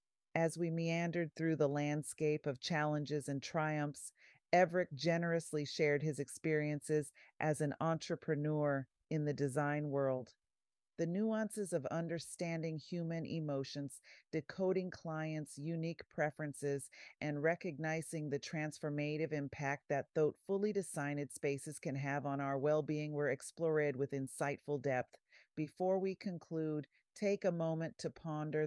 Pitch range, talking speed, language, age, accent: 140-160 Hz, 125 wpm, English, 40-59, American